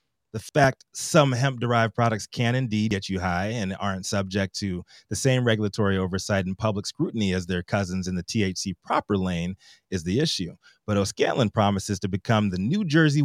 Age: 30-49